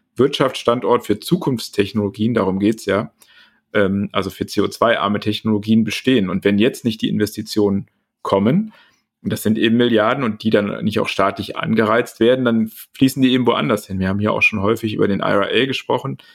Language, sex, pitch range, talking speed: German, male, 105-115 Hz, 175 wpm